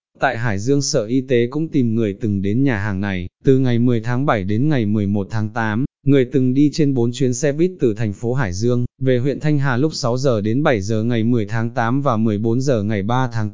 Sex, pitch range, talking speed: male, 115-140 Hz, 255 wpm